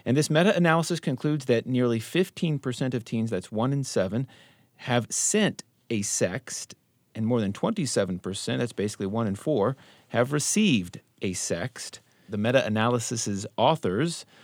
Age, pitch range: 40-59, 100-140 Hz